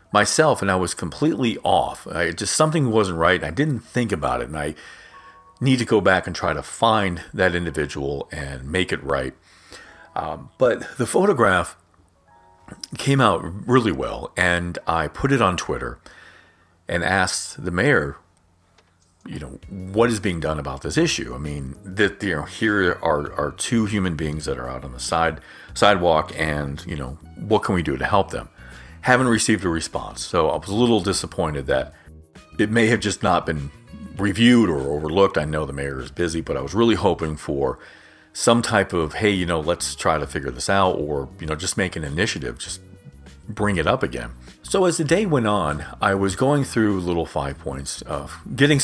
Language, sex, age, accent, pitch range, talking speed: English, male, 40-59, American, 75-105 Hz, 195 wpm